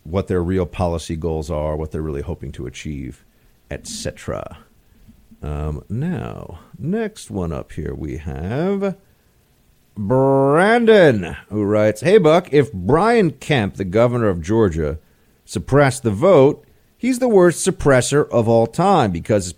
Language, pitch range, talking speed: English, 100-150 Hz, 135 wpm